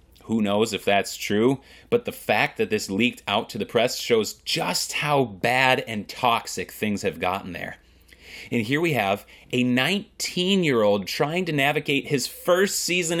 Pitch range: 110-170 Hz